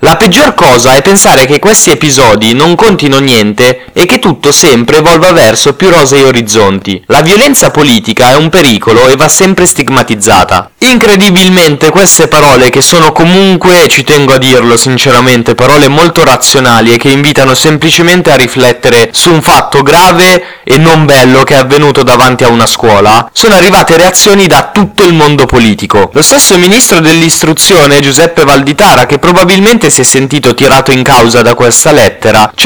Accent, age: native, 20-39